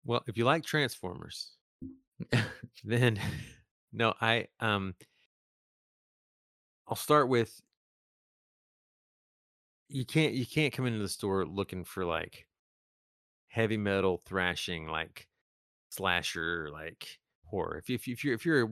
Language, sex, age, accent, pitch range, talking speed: English, male, 30-49, American, 85-120 Hz, 120 wpm